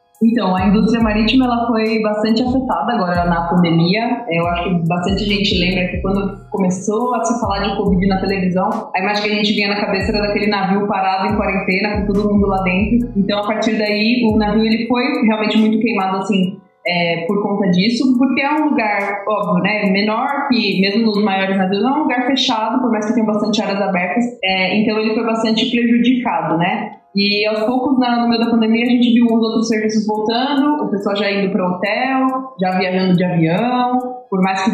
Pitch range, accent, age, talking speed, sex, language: 195-235 Hz, Brazilian, 20-39, 205 wpm, female, Portuguese